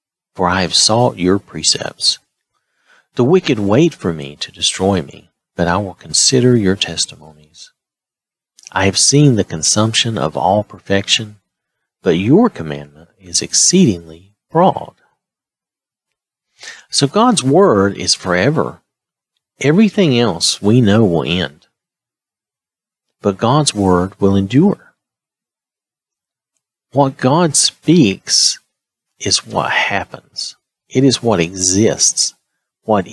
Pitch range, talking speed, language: 95-135 Hz, 110 wpm, English